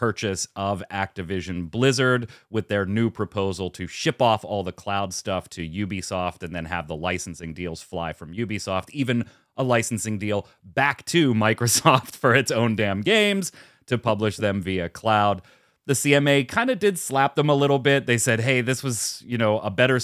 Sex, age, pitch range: male, 30-49, 90-120 Hz